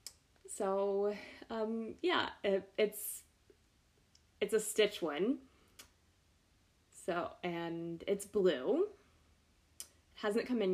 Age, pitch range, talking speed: 10-29, 185-245 Hz, 90 wpm